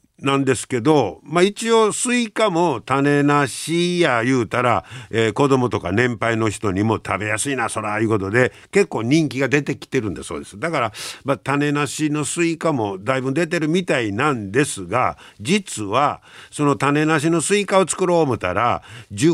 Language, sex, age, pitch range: Japanese, male, 50-69, 115-175 Hz